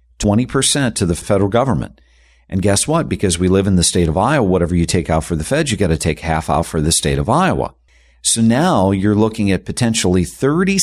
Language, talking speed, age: English, 225 wpm, 50-69